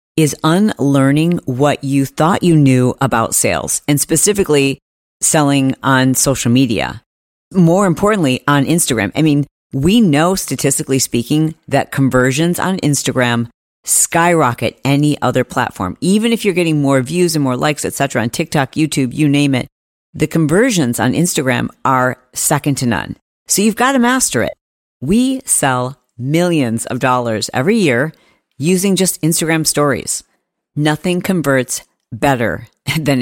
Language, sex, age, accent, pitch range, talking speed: English, female, 40-59, American, 130-170 Hz, 145 wpm